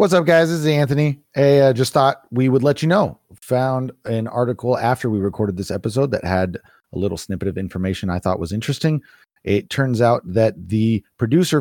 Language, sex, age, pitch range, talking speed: English, male, 30-49, 100-130 Hz, 205 wpm